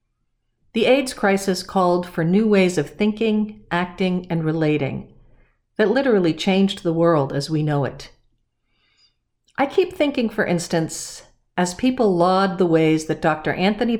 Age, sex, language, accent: 50-69, female, English, American